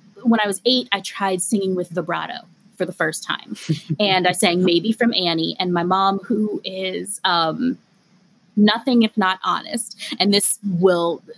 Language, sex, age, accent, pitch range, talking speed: English, female, 20-39, American, 180-220 Hz, 170 wpm